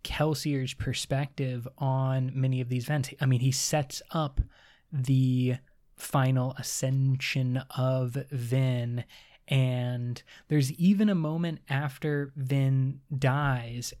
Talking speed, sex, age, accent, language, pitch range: 105 wpm, male, 20-39, American, English, 130-145 Hz